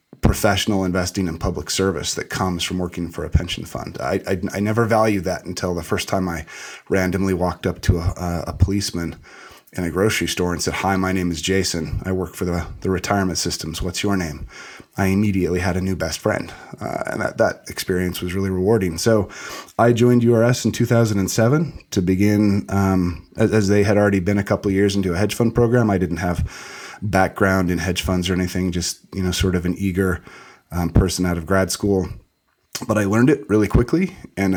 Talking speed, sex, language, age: 205 wpm, male, English, 30-49